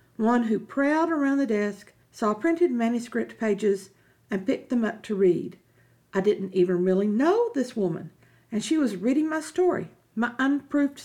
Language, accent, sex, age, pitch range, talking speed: English, American, female, 50-69, 185-275 Hz, 170 wpm